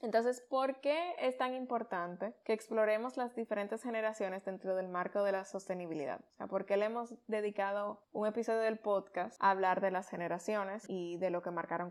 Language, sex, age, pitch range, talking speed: Spanish, female, 10-29, 195-230 Hz, 190 wpm